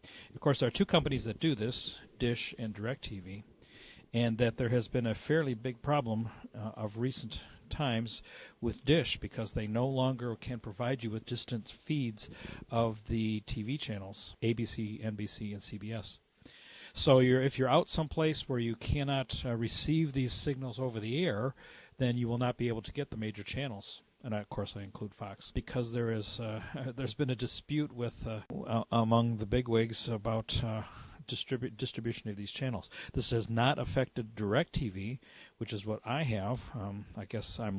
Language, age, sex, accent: English, 40-59, male, American